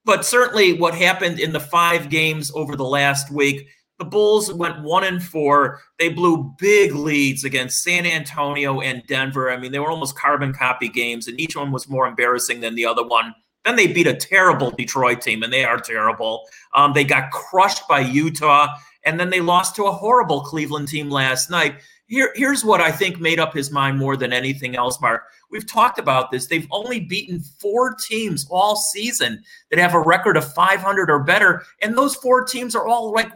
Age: 40-59